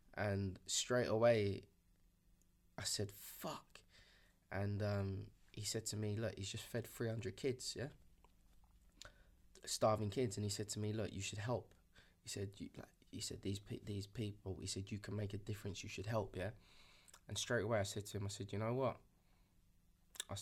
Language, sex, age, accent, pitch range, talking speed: English, male, 20-39, British, 100-115 Hz, 190 wpm